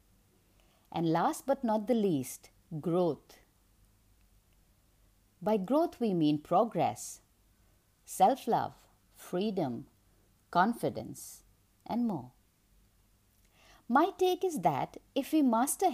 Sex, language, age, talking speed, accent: female, English, 50-69, 90 wpm, Indian